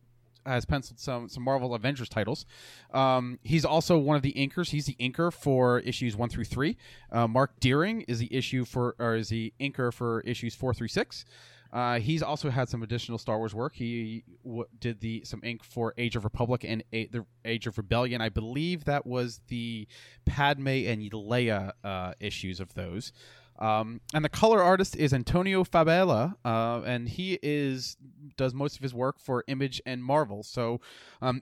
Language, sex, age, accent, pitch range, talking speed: English, male, 20-39, American, 115-145 Hz, 185 wpm